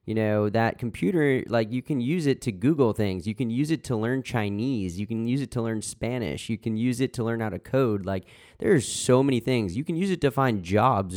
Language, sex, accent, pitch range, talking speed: English, male, American, 90-115 Hz, 255 wpm